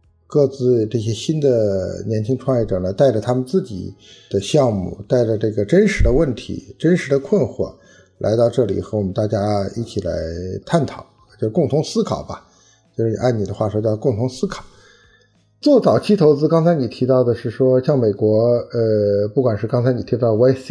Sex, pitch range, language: male, 100-130 Hz, Chinese